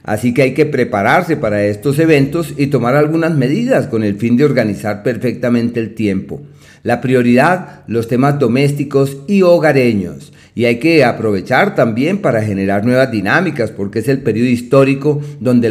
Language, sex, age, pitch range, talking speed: Spanish, male, 40-59, 110-145 Hz, 160 wpm